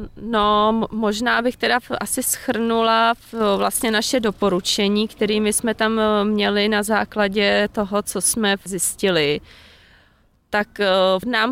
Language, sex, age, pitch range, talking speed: Czech, female, 30-49, 180-215 Hz, 110 wpm